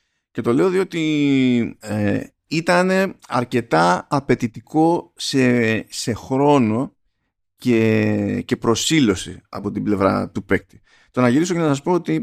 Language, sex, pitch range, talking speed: Greek, male, 110-150 Hz, 130 wpm